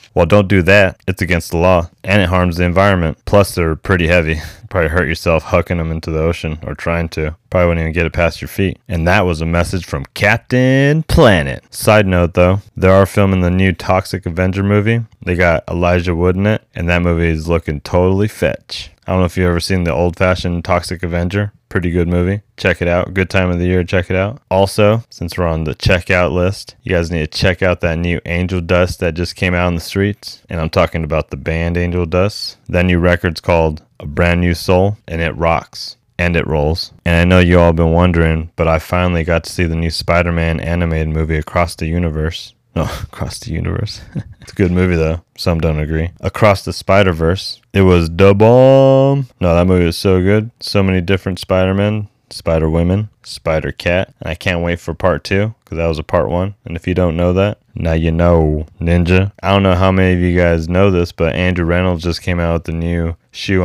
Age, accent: 20-39, American